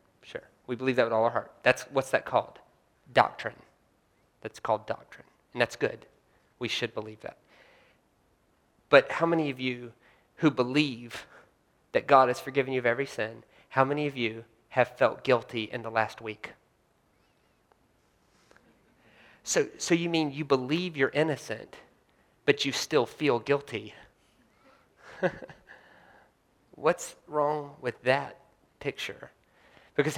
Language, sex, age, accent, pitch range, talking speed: English, male, 30-49, American, 120-145 Hz, 135 wpm